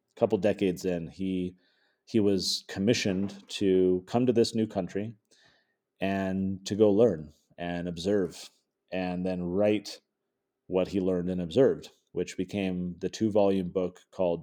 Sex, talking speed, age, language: male, 135 wpm, 30-49, English